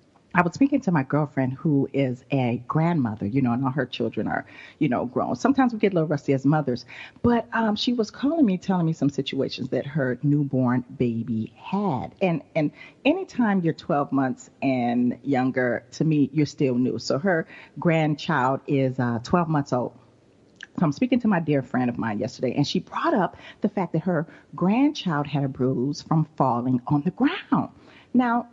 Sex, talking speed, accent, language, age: female, 195 wpm, American, English, 40-59